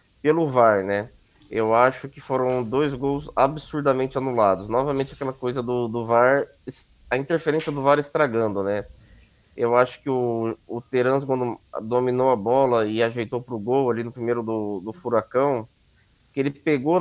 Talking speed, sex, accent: 160 wpm, male, Brazilian